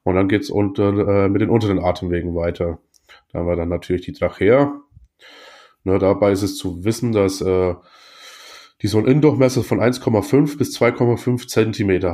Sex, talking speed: male, 170 wpm